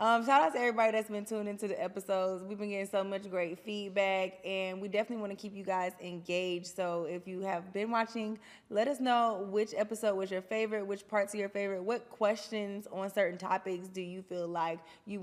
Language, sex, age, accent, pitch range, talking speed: English, female, 20-39, American, 180-210 Hz, 220 wpm